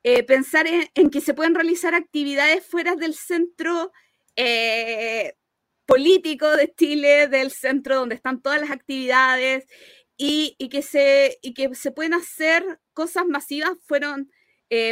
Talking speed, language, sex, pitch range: 135 wpm, Spanish, female, 255-320 Hz